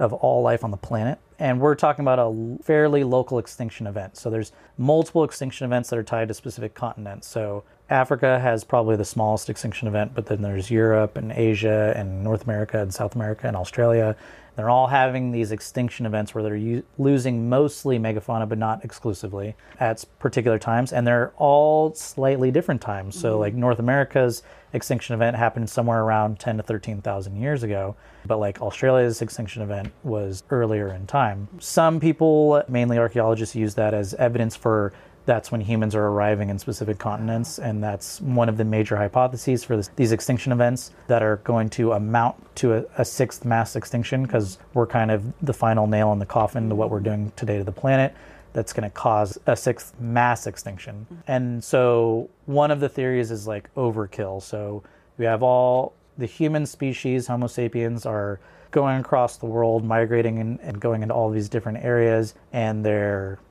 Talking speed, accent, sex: 180 wpm, American, male